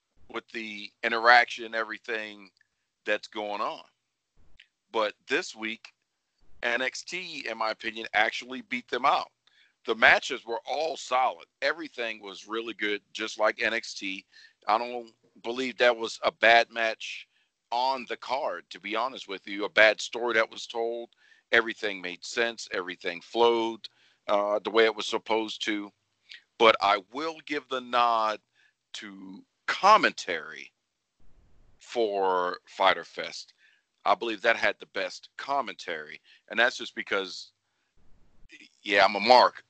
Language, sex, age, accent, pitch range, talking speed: English, male, 50-69, American, 100-120 Hz, 135 wpm